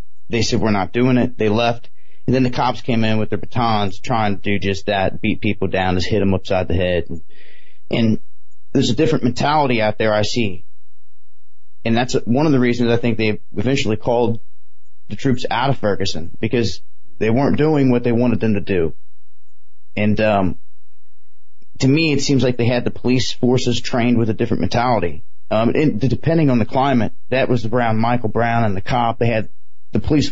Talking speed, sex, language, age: 205 wpm, male, English, 30-49